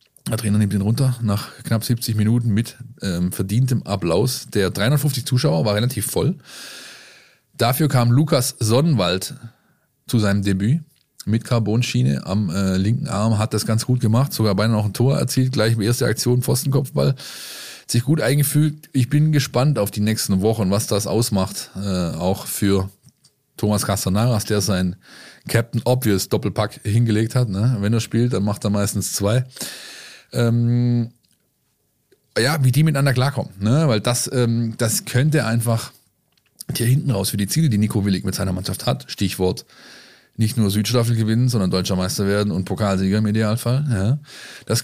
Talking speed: 165 wpm